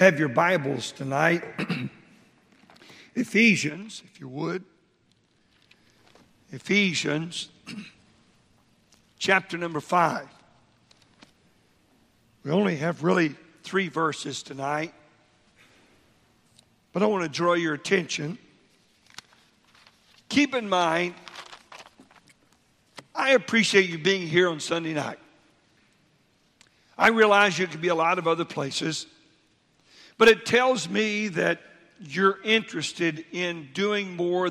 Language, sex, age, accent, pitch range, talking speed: English, male, 60-79, American, 165-195 Hz, 100 wpm